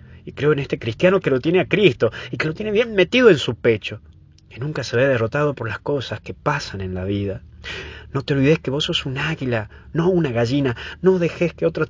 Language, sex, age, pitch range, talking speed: Spanish, male, 30-49, 105-145 Hz, 235 wpm